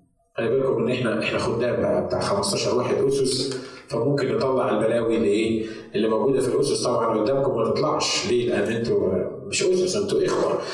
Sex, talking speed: male, 170 wpm